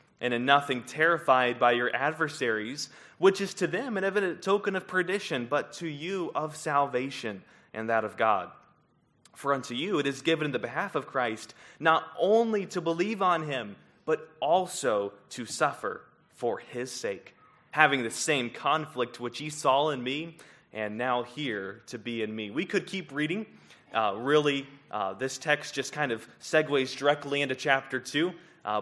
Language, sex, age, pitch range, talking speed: English, male, 20-39, 120-150 Hz, 175 wpm